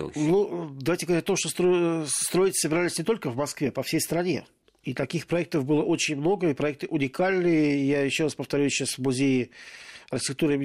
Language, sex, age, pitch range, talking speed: Russian, male, 40-59, 140-175 Hz, 185 wpm